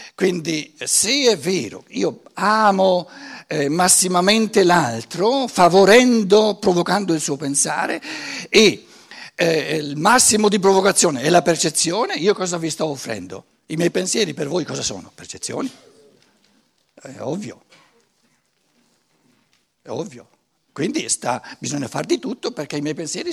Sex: male